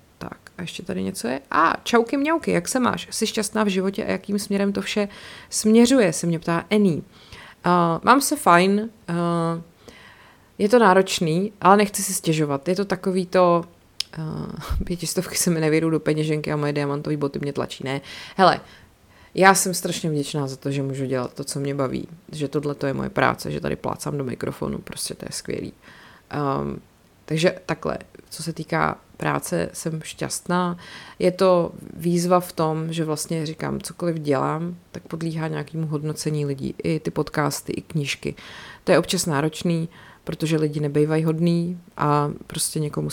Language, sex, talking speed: Czech, female, 170 wpm